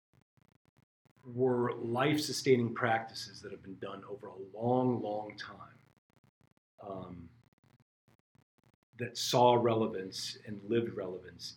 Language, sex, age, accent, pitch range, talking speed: English, male, 40-59, American, 110-130 Hz, 100 wpm